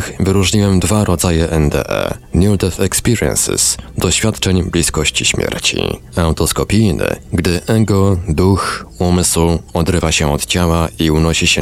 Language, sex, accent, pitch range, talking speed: Polish, male, native, 85-100 Hz, 115 wpm